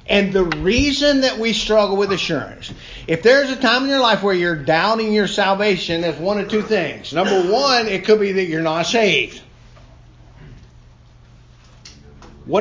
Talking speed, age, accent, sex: 165 wpm, 50-69, American, male